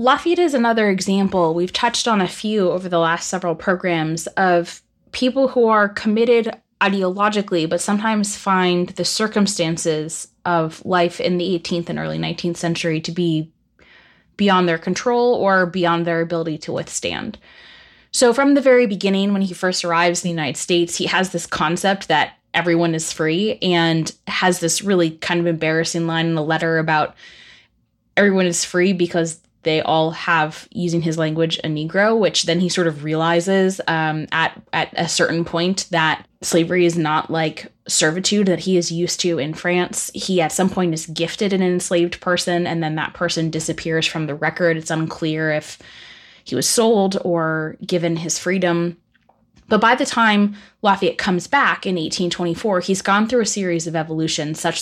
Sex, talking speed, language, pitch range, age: female, 175 wpm, English, 165-195 Hz, 20-39